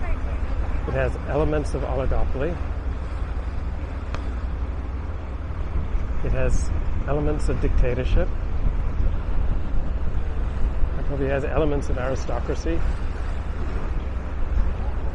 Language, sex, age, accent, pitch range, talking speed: English, male, 40-59, American, 75-85 Hz, 65 wpm